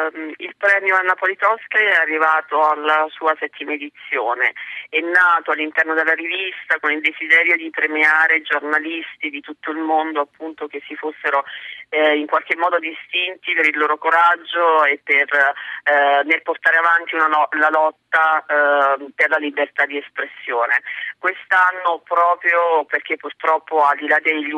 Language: Italian